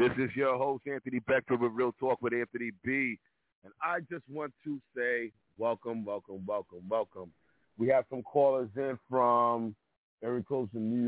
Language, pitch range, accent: English, 100-130 Hz, American